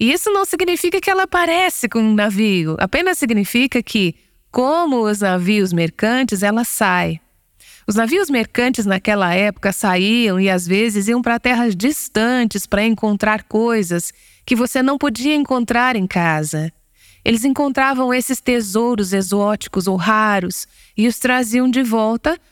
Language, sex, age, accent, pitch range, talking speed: Portuguese, female, 20-39, Brazilian, 195-255 Hz, 145 wpm